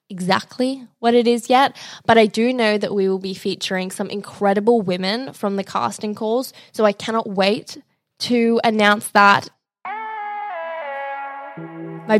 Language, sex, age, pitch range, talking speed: English, female, 10-29, 190-235 Hz, 145 wpm